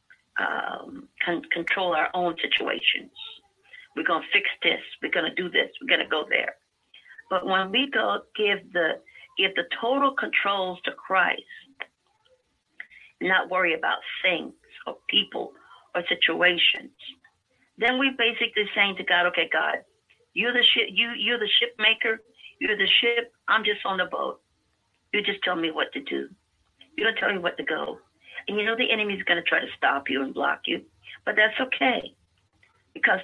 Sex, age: female, 50-69